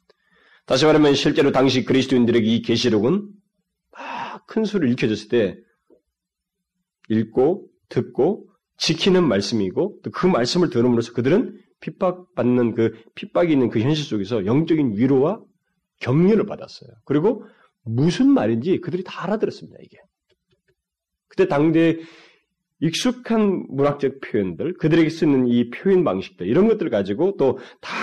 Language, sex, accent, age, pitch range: Korean, male, native, 30-49, 115-190 Hz